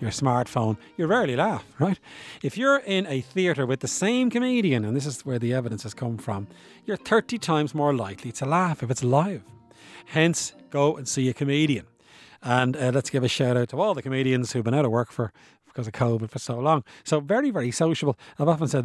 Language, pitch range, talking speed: English, 120-155 Hz, 225 wpm